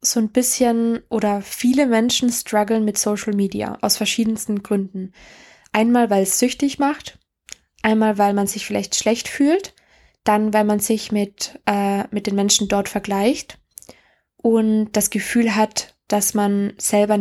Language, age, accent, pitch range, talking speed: German, 20-39, German, 205-240 Hz, 145 wpm